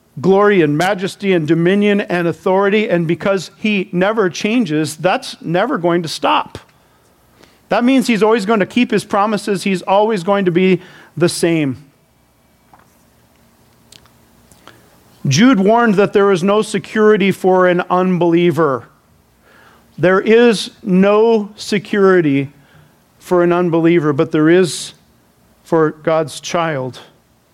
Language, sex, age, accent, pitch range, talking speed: English, male, 50-69, American, 145-195 Hz, 120 wpm